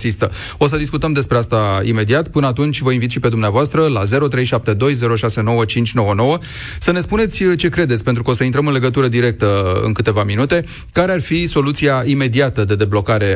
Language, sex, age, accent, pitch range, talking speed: Romanian, male, 30-49, native, 115-140 Hz, 170 wpm